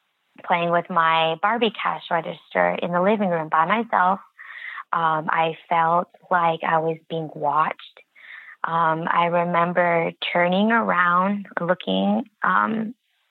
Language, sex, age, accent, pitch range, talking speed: English, female, 20-39, American, 160-185 Hz, 120 wpm